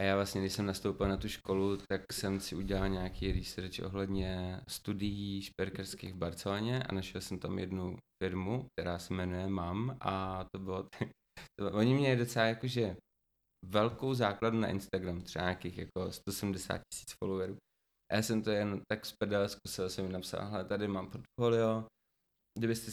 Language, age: Czech, 20-39